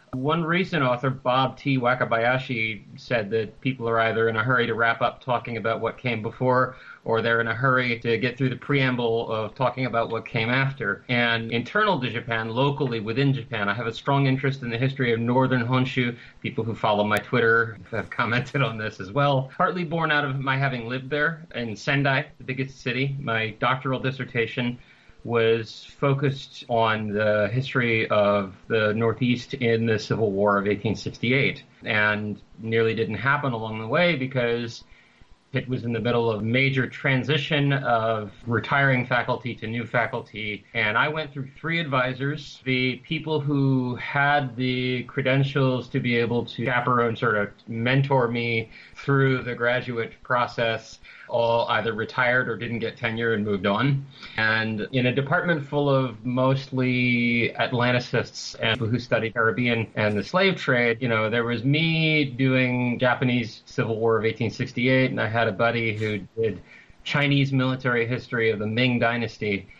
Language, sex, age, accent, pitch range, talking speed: English, male, 30-49, American, 115-135 Hz, 170 wpm